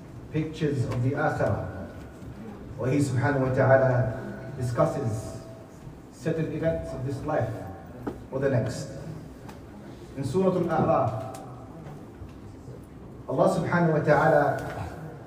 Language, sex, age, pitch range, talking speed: English, male, 30-49, 130-175 Hz, 100 wpm